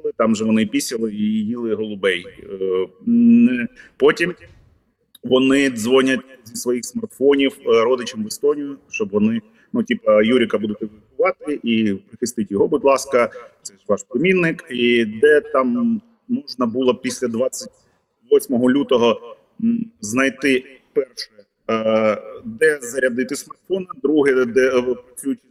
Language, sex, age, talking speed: Ukrainian, male, 30-49, 110 wpm